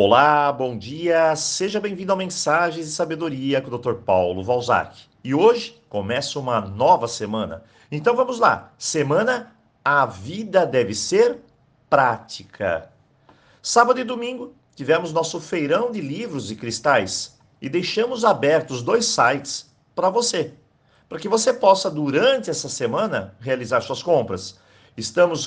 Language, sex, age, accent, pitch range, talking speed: Portuguese, male, 50-69, Brazilian, 120-190 Hz, 135 wpm